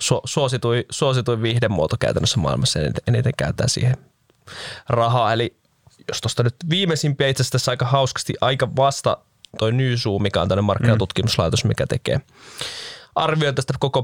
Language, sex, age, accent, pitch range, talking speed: Finnish, male, 20-39, native, 110-130 Hz, 150 wpm